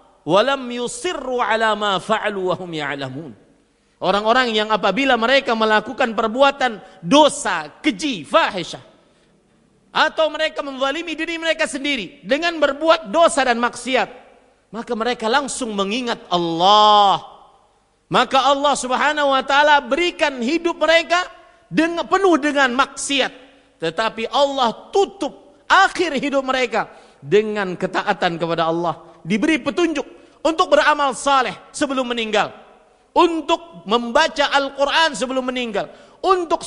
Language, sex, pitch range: Indonesian, male, 210-315 Hz